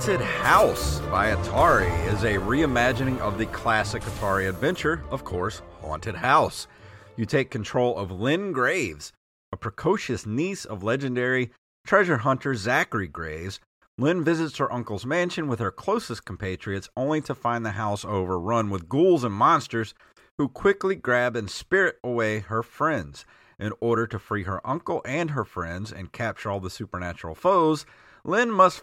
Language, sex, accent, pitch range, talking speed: English, male, American, 95-125 Hz, 155 wpm